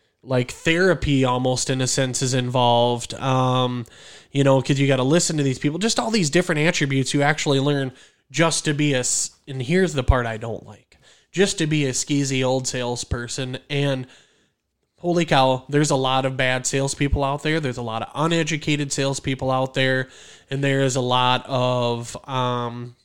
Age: 20-39